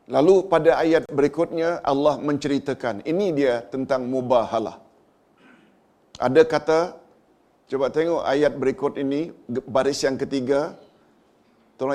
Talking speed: 105 wpm